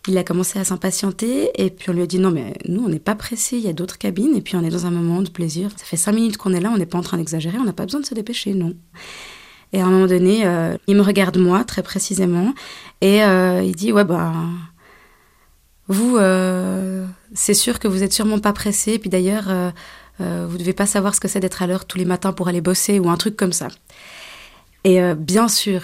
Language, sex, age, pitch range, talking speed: French, female, 20-39, 180-210 Hz, 265 wpm